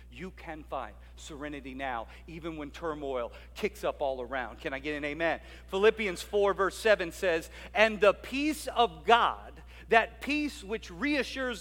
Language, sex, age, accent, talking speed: English, male, 50-69, American, 160 wpm